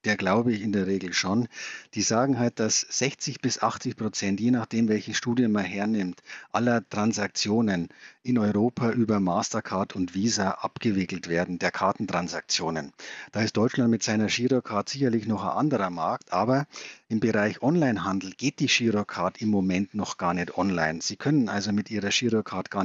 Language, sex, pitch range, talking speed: German, male, 100-120 Hz, 170 wpm